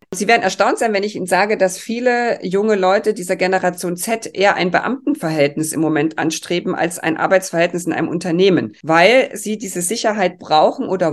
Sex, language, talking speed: female, German, 180 wpm